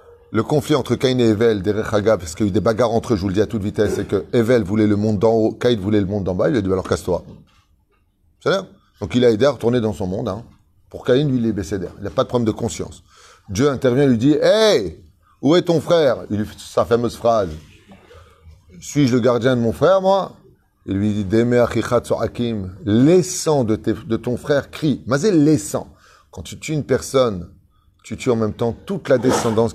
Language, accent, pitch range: French, French, 105-145 Hz